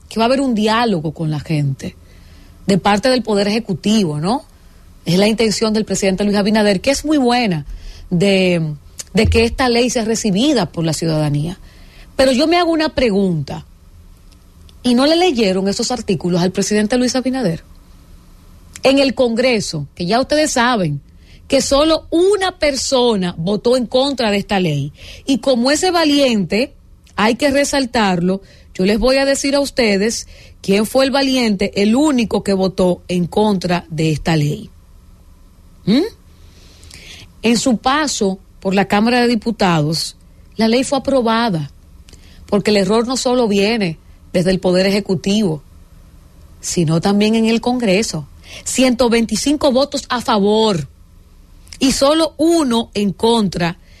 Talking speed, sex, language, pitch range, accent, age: 145 wpm, female, English, 165-250 Hz, American, 40-59